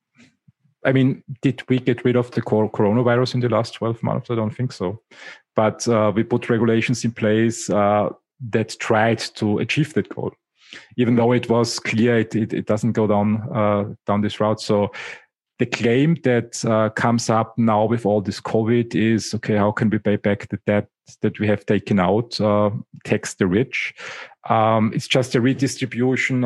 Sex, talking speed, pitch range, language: male, 185 wpm, 105-120 Hz, English